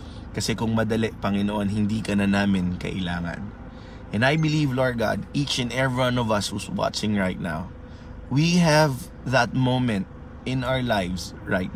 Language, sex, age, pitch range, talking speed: Filipino, male, 20-39, 90-120 Hz, 165 wpm